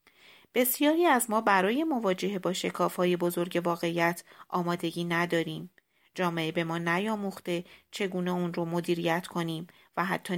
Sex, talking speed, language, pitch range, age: female, 135 wpm, Persian, 170-195 Hz, 30-49